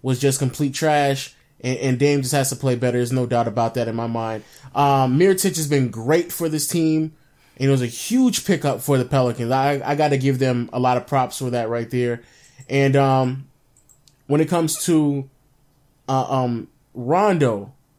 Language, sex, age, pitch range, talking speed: English, male, 20-39, 135-175 Hz, 200 wpm